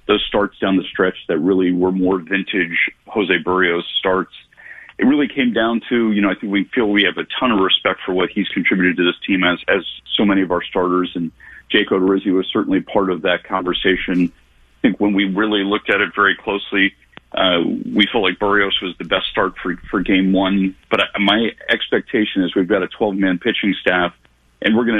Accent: American